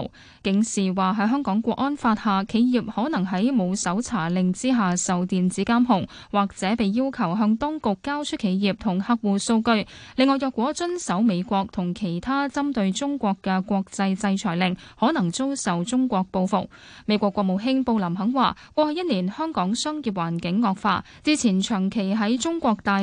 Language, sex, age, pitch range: Chinese, female, 10-29, 195-255 Hz